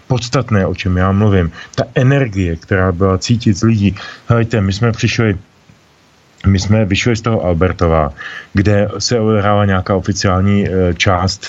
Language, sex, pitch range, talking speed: Slovak, male, 90-105 Hz, 150 wpm